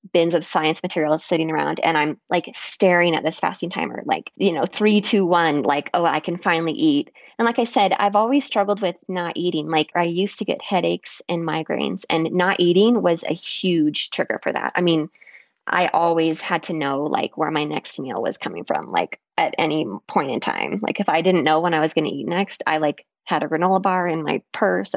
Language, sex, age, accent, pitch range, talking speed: English, female, 20-39, American, 160-205 Hz, 230 wpm